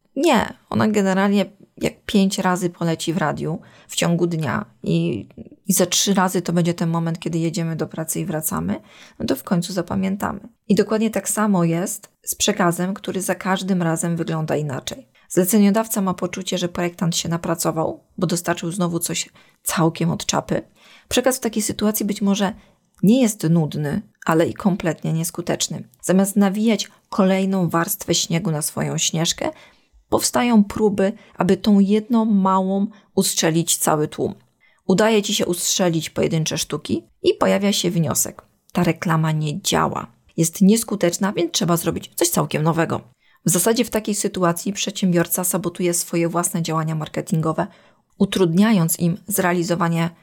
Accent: native